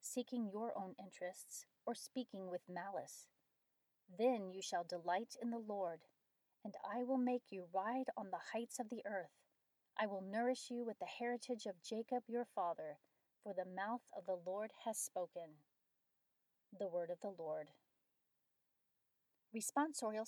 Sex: female